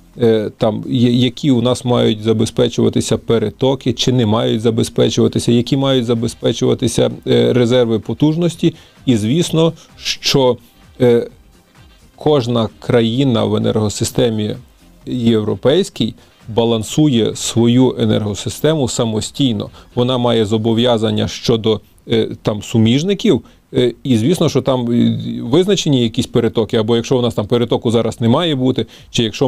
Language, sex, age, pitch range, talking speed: Ukrainian, male, 30-49, 110-130 Hz, 105 wpm